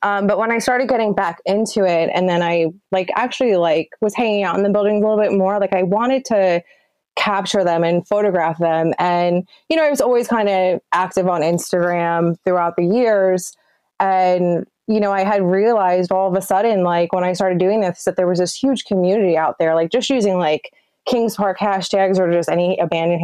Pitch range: 175-215 Hz